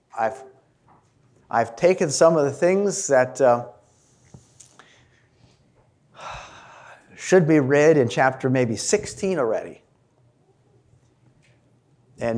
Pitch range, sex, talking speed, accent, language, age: 120-155 Hz, male, 85 wpm, American, English, 50-69